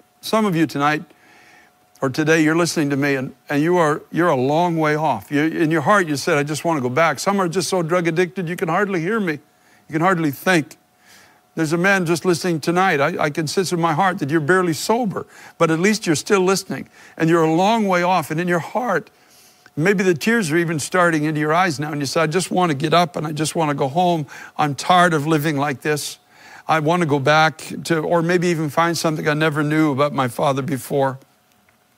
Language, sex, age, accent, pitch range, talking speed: English, male, 60-79, American, 145-175 Hz, 235 wpm